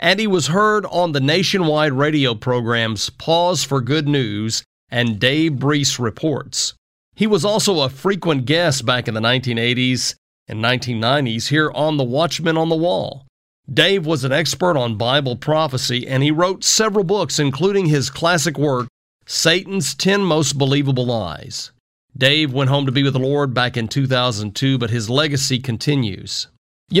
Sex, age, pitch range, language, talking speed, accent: male, 40-59, 120-155 Hz, English, 160 wpm, American